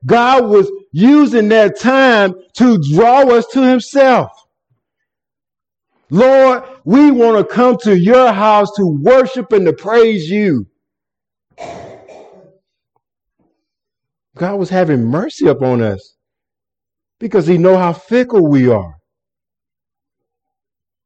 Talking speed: 105 wpm